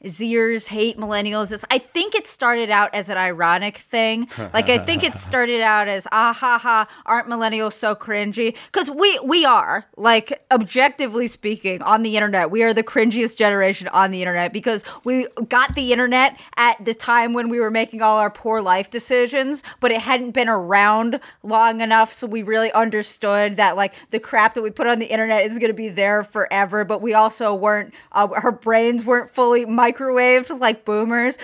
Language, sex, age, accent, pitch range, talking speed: English, female, 20-39, American, 215-250 Hz, 195 wpm